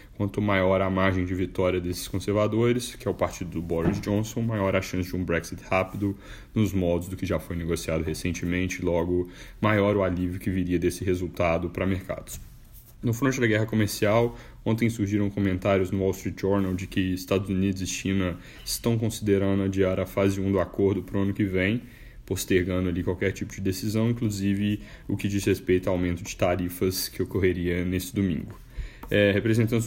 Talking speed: 185 wpm